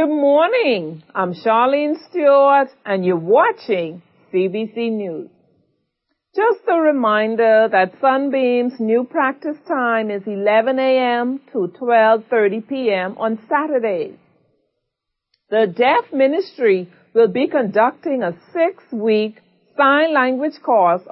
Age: 50-69